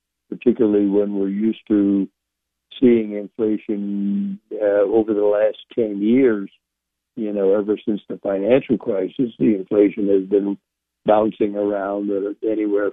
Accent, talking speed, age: American, 125 wpm, 60-79